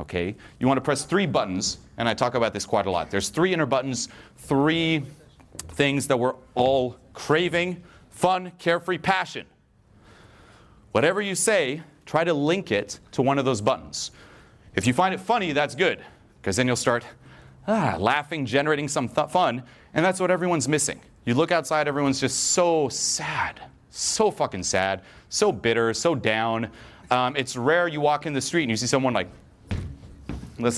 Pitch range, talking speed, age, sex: 105-155 Hz, 170 wpm, 30-49, male